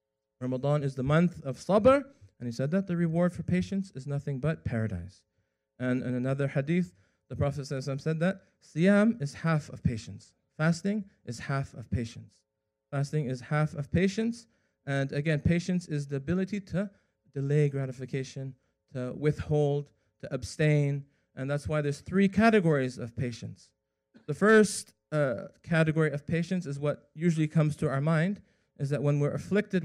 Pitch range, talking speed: 135-175 Hz, 160 wpm